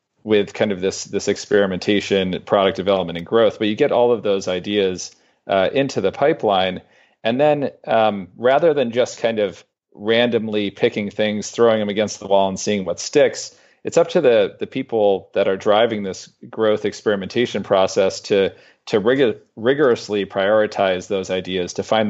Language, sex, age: English, male, 40-59